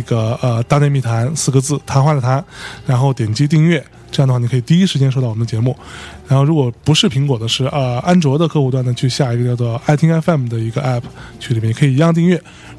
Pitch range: 120-150 Hz